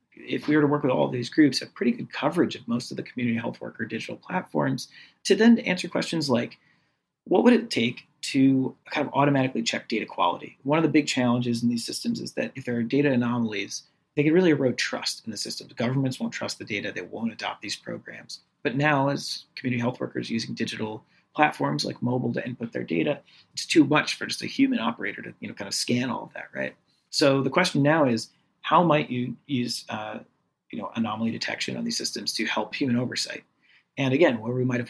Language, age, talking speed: English, 30-49, 230 wpm